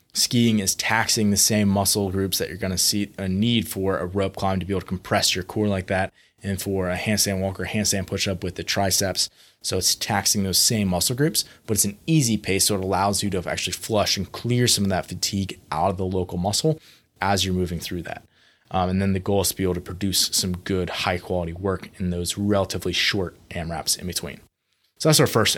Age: 20-39